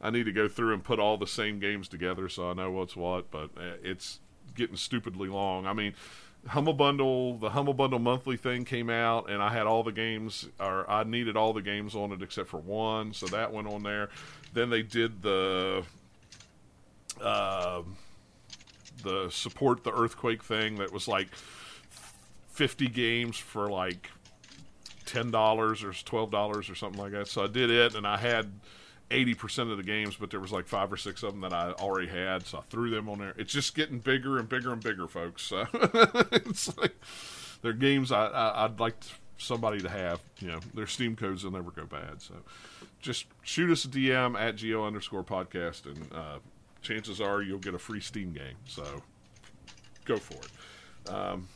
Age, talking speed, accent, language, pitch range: 40-59, 190 wpm, American, English, 95-120 Hz